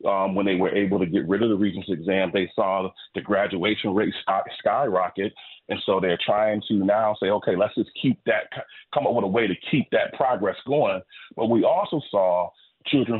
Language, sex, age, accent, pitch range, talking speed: English, male, 30-49, American, 95-120 Hz, 205 wpm